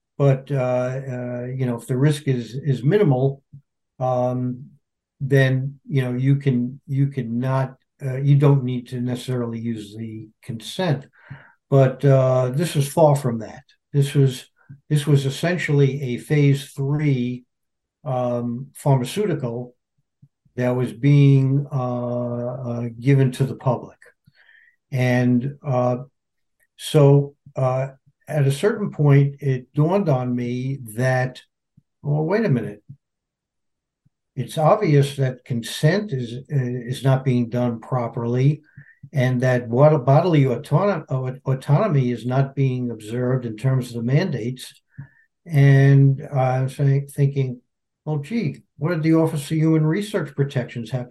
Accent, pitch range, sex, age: American, 125-145 Hz, male, 60-79